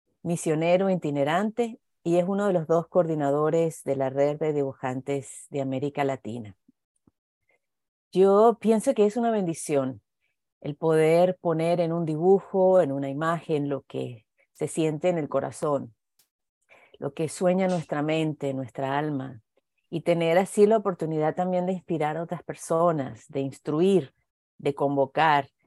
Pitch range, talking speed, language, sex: 140-180 Hz, 145 wpm, English, female